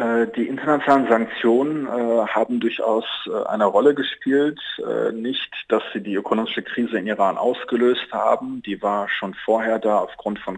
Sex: male